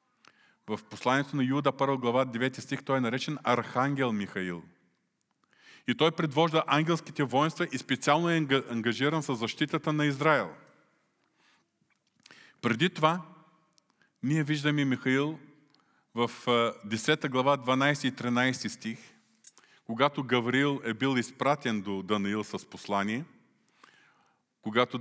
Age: 40-59